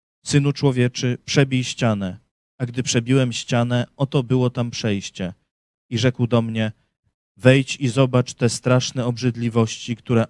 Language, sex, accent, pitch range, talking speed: Polish, male, native, 115-130 Hz, 135 wpm